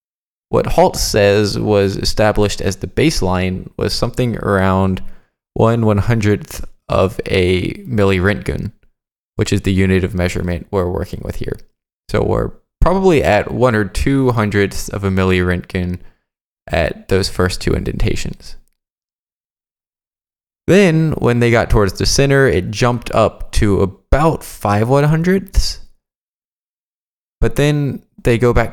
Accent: American